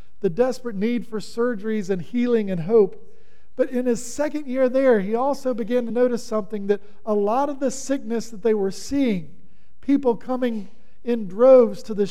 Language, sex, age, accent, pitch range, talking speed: English, male, 50-69, American, 200-250 Hz, 185 wpm